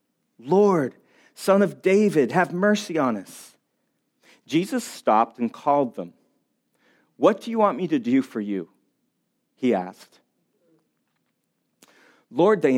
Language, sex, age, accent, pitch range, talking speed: English, male, 40-59, American, 135-210 Hz, 120 wpm